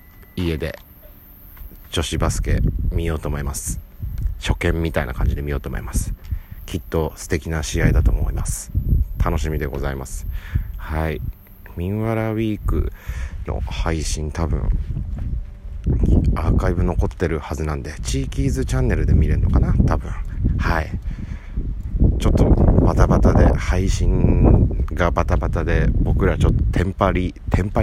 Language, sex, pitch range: Japanese, male, 75-95 Hz